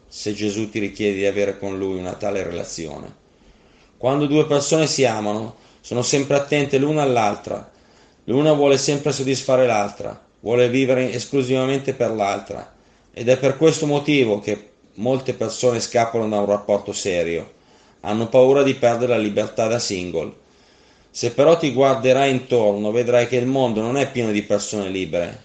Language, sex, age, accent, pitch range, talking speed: Italian, male, 30-49, native, 105-135 Hz, 160 wpm